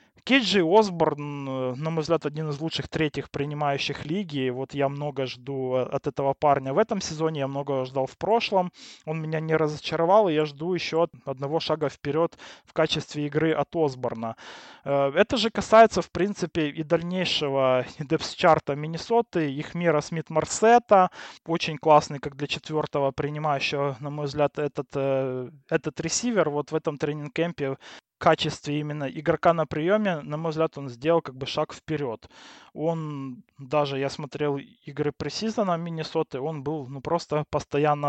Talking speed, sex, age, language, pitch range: 155 wpm, male, 20-39, Russian, 140-165 Hz